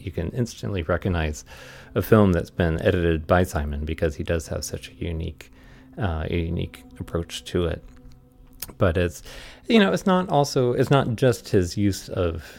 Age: 30-49